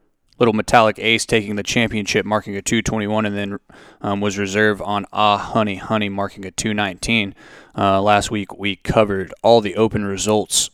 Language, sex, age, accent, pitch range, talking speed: English, male, 20-39, American, 100-120 Hz, 170 wpm